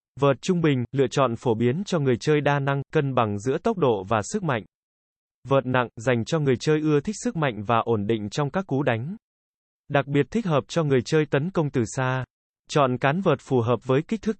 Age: 20-39